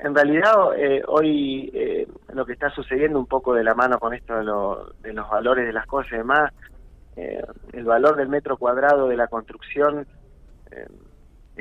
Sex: male